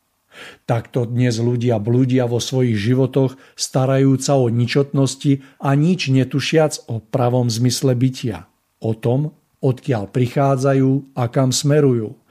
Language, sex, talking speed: Slovak, male, 115 wpm